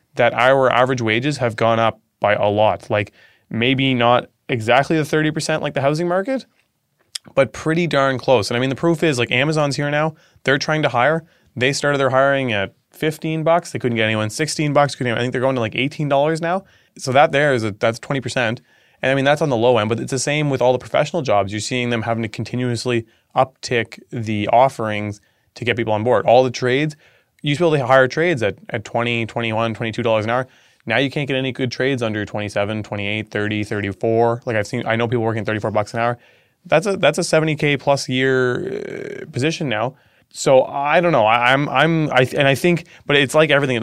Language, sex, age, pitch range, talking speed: English, male, 20-39, 110-145 Hz, 235 wpm